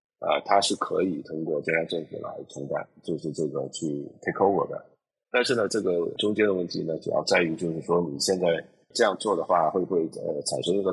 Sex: male